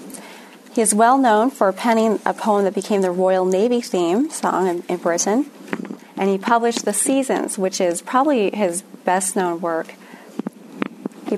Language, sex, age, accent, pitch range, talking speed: English, female, 30-49, American, 180-235 Hz, 155 wpm